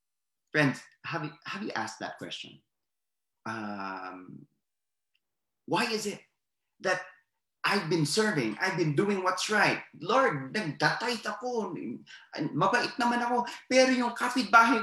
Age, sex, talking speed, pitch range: 20-39, male, 120 wpm, 135-230 Hz